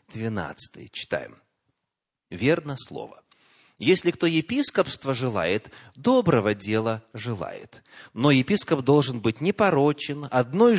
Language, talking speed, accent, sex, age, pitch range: Russian, 100 wpm, native, male, 30-49, 115-175 Hz